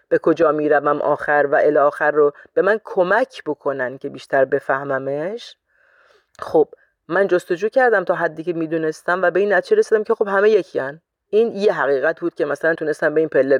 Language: Persian